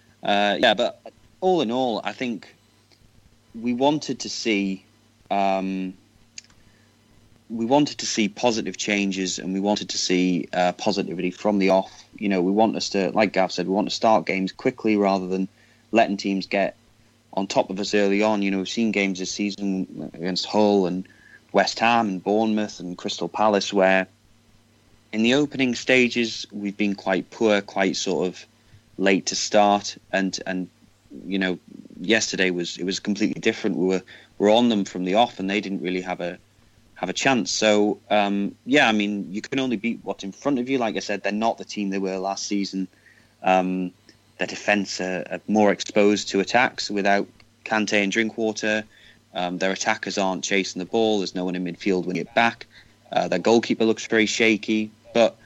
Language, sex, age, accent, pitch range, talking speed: English, male, 30-49, British, 95-110 Hz, 190 wpm